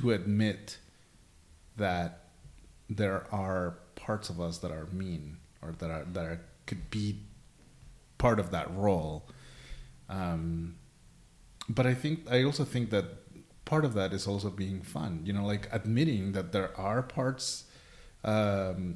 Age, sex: 30-49, male